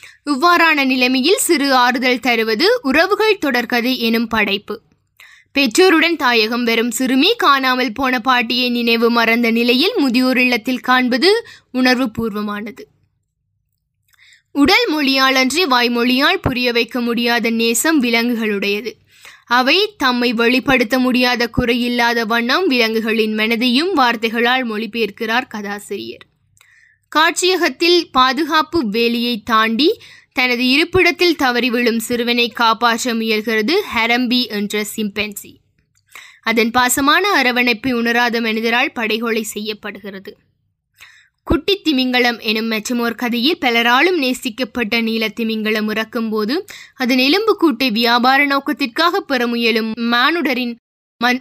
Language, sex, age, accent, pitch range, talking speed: Tamil, female, 20-39, native, 230-275 Hz, 95 wpm